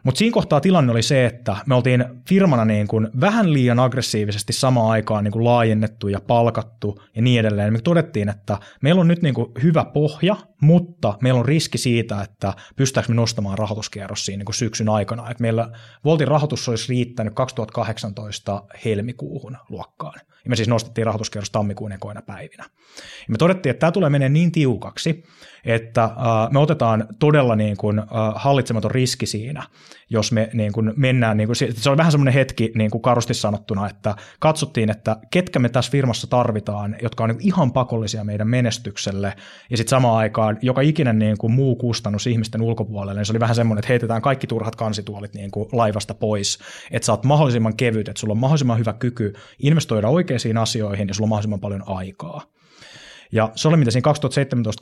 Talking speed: 180 wpm